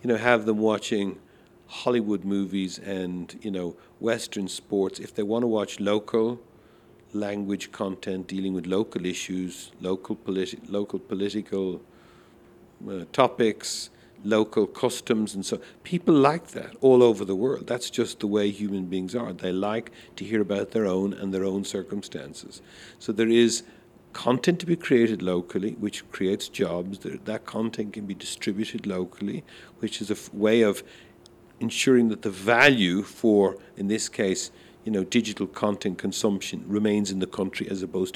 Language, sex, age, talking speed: Arabic, male, 50-69, 155 wpm